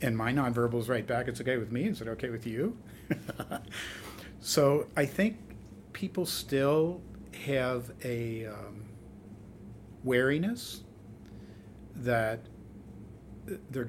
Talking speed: 110 wpm